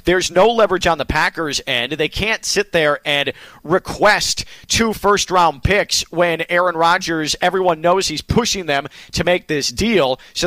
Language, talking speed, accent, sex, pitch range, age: English, 165 wpm, American, male, 165-235 Hz, 40-59